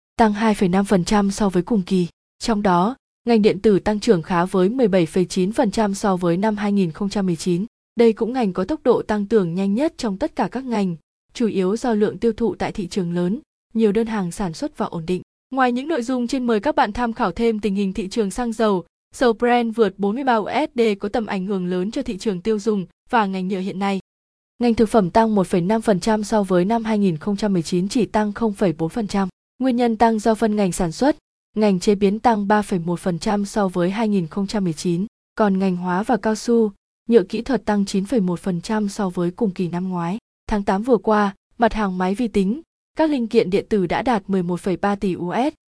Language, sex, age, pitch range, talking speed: Vietnamese, female, 20-39, 190-230 Hz, 200 wpm